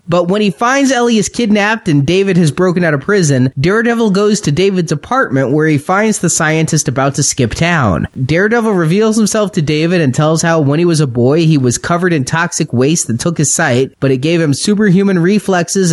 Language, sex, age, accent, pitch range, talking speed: English, male, 30-49, American, 145-190 Hz, 215 wpm